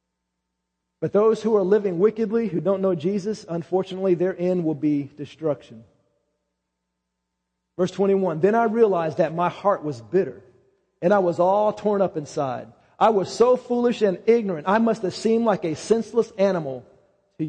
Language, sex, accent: English, male, American